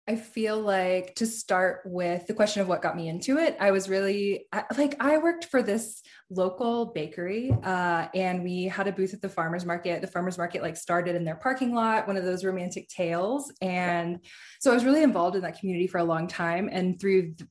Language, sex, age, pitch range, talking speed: English, female, 20-39, 175-210 Hz, 215 wpm